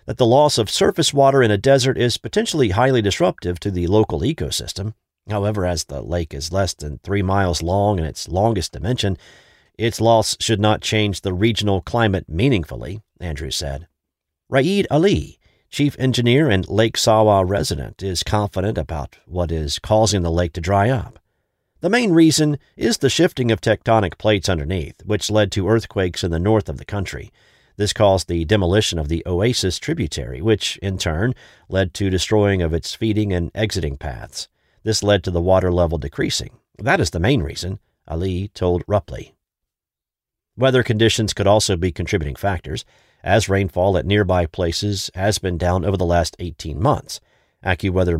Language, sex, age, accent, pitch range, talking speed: English, male, 50-69, American, 85-110 Hz, 170 wpm